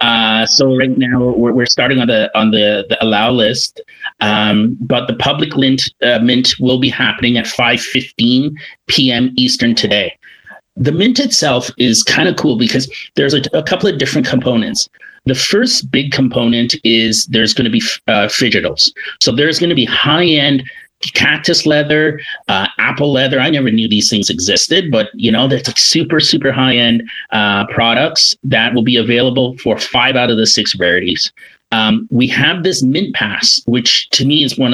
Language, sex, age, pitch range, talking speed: English, male, 30-49, 115-140 Hz, 180 wpm